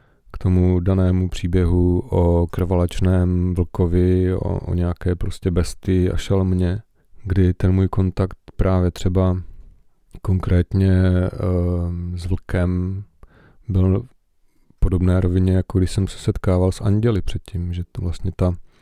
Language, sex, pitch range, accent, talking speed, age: Czech, male, 90-95 Hz, native, 125 wpm, 40-59